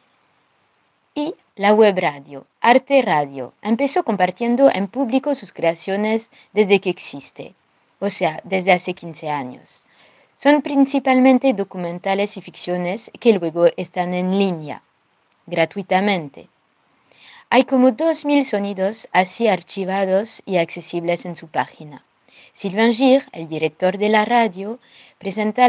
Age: 20-39